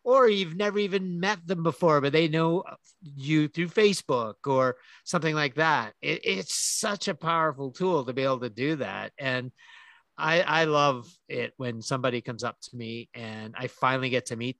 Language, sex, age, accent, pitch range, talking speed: English, male, 50-69, American, 125-160 Hz, 190 wpm